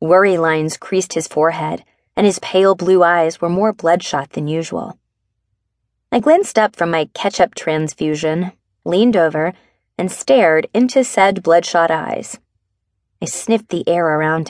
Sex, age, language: female, 20-39, English